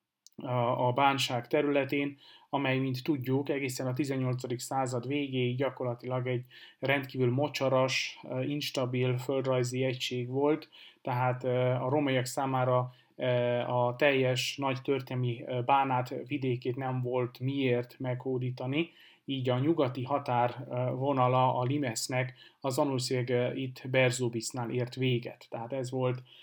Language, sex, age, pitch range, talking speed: Hungarian, male, 30-49, 125-135 Hz, 110 wpm